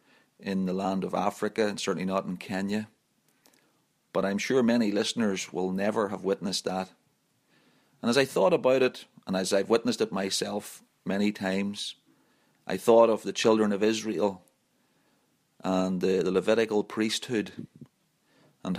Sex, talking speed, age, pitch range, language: male, 150 wpm, 40-59, 95-110 Hz, English